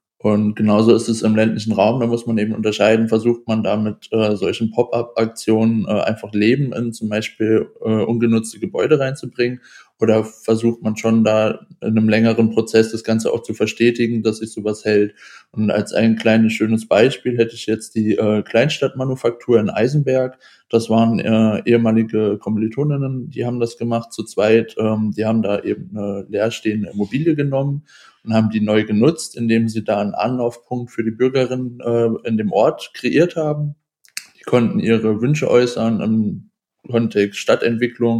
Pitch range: 110-120 Hz